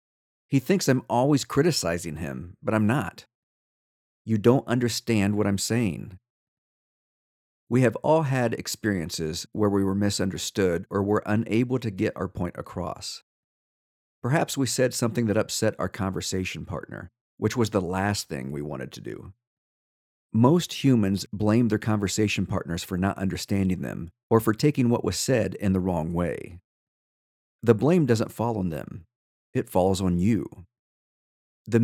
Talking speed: 155 wpm